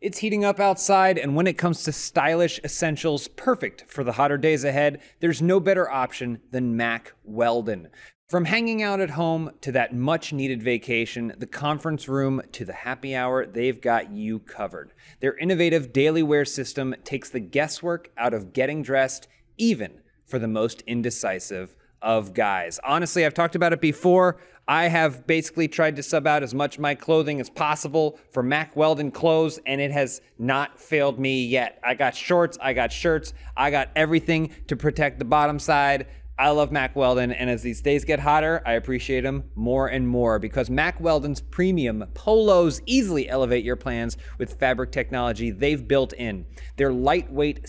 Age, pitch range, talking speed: 30-49, 125-165 Hz, 175 wpm